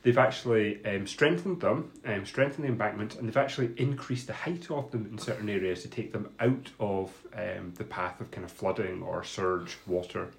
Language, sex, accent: English, male, British